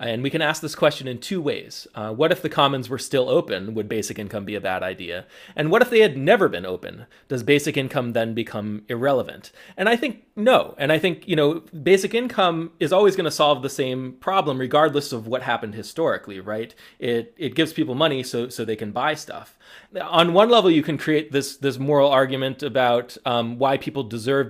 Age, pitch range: 30-49, 115-155 Hz